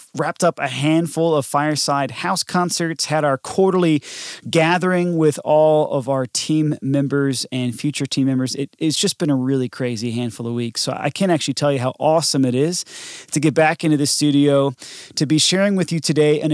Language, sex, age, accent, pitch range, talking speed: English, male, 30-49, American, 130-165 Hz, 195 wpm